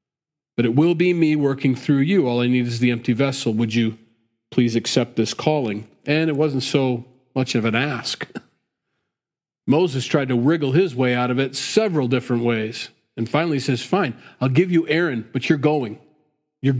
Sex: male